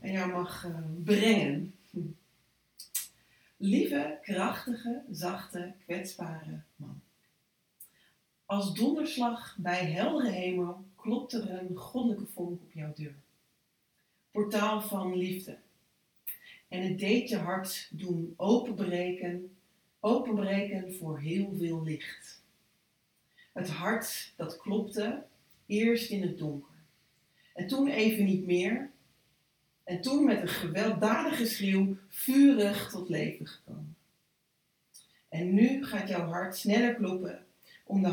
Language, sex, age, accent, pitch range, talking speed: Dutch, female, 40-59, Dutch, 175-215 Hz, 110 wpm